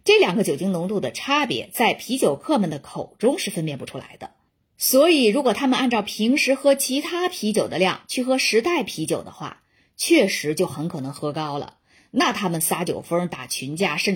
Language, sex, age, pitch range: Chinese, female, 20-39, 160-250 Hz